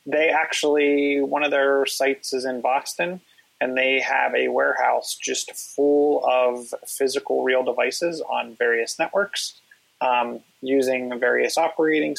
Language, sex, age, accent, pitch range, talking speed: English, male, 30-49, American, 120-140 Hz, 135 wpm